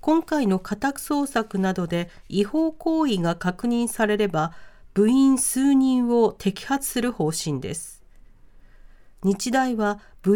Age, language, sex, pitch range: 40-59, Japanese, female, 180-265 Hz